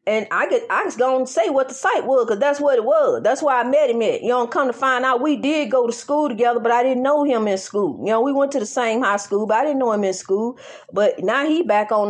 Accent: American